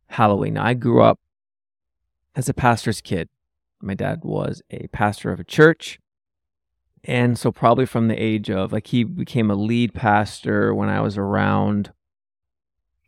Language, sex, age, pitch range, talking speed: English, male, 20-39, 95-120 Hz, 155 wpm